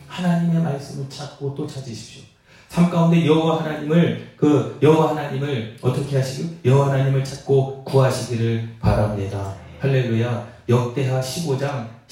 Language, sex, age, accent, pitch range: Korean, male, 30-49, native, 120-155 Hz